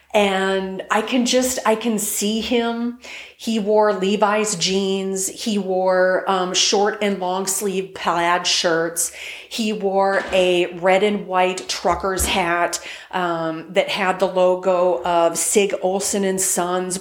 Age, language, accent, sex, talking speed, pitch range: 40-59, English, American, female, 140 wpm, 180-220 Hz